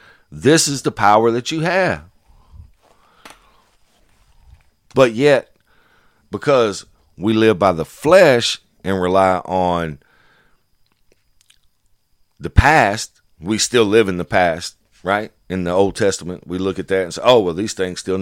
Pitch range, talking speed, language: 85-110 Hz, 140 wpm, English